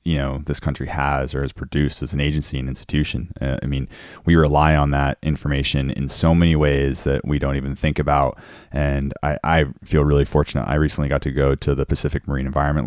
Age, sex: 30-49, male